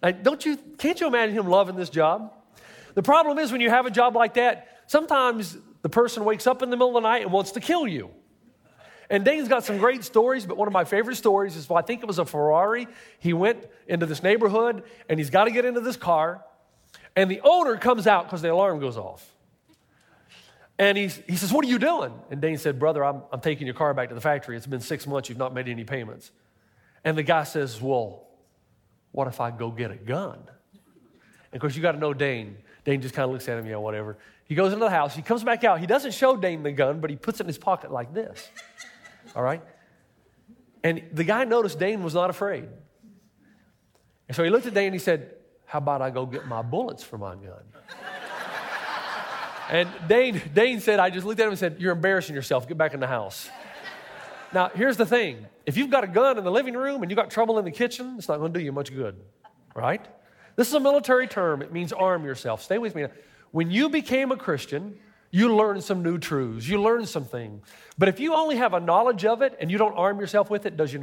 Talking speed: 240 wpm